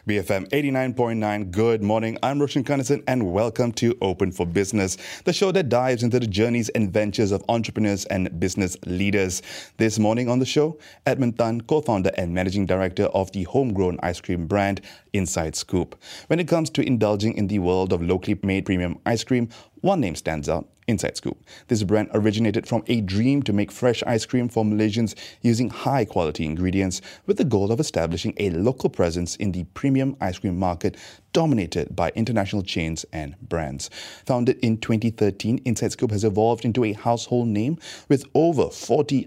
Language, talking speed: English, 180 wpm